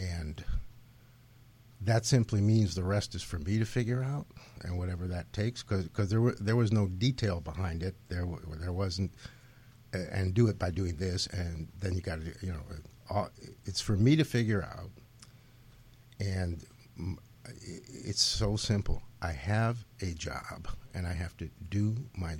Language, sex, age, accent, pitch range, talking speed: English, male, 60-79, American, 90-120 Hz, 165 wpm